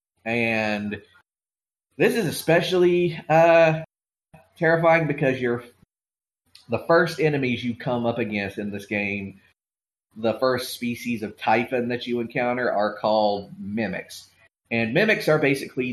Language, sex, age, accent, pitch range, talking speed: English, male, 30-49, American, 105-130 Hz, 120 wpm